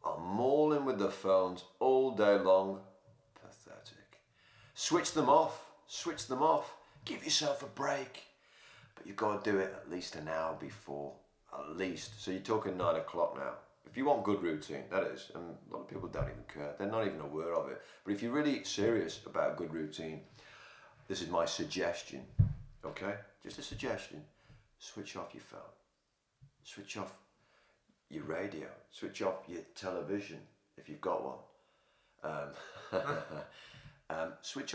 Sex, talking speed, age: male, 160 wpm, 40-59